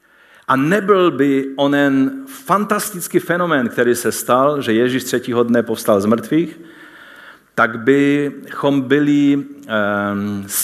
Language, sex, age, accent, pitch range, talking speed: Czech, male, 50-69, native, 120-165 Hz, 115 wpm